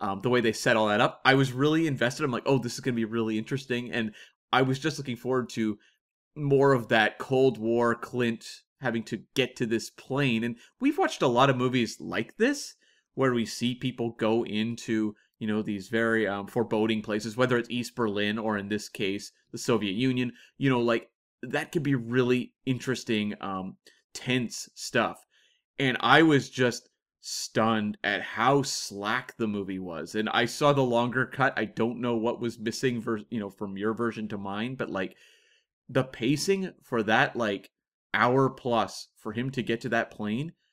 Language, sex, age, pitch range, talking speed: English, male, 30-49, 110-135 Hz, 195 wpm